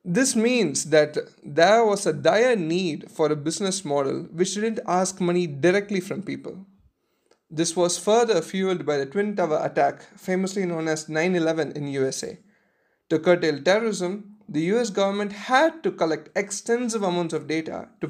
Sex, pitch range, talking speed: male, 155-205 Hz, 160 wpm